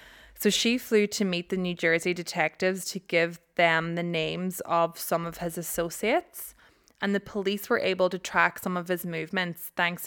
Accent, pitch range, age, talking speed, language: Irish, 175-205 Hz, 20-39, 185 wpm, English